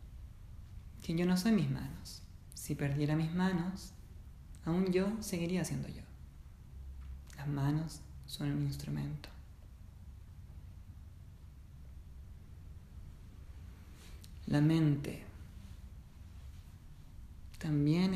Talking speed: 75 wpm